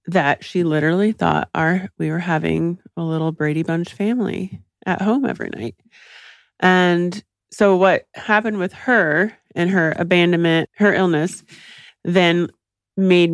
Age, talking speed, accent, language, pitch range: 30-49, 130 wpm, American, English, 155-190 Hz